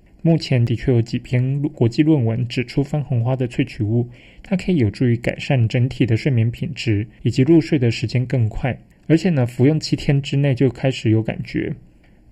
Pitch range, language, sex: 115-145 Hz, Chinese, male